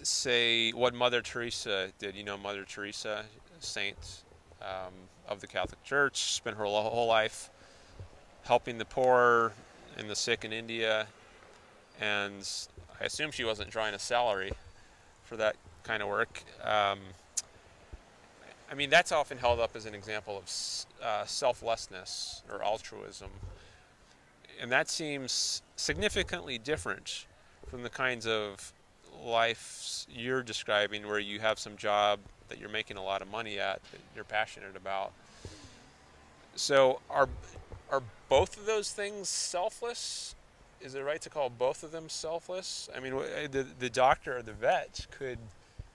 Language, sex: English, male